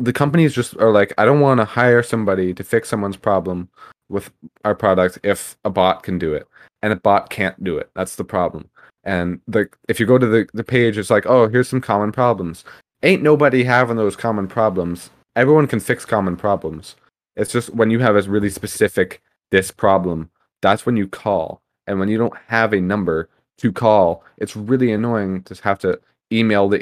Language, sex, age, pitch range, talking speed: English, male, 20-39, 95-115 Hz, 200 wpm